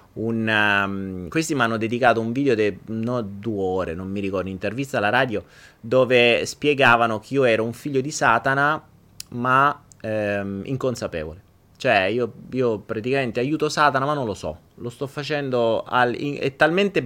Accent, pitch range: native, 105-150 Hz